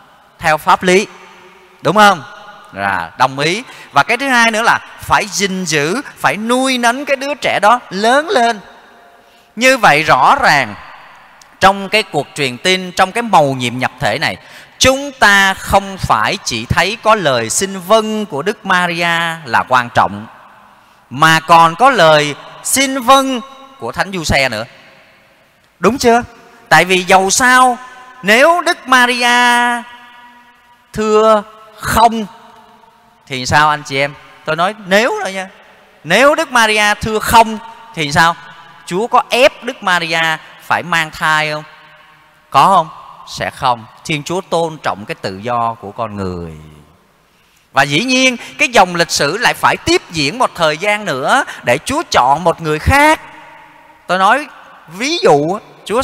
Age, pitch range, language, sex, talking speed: 30-49, 155-240 Hz, Vietnamese, male, 155 wpm